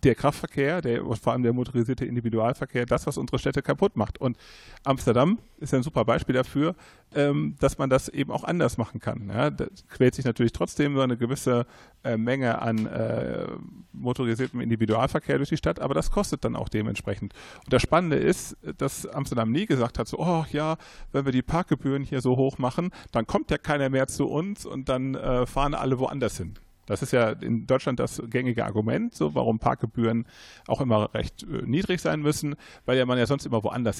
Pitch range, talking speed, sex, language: 115-135 Hz, 200 wpm, male, German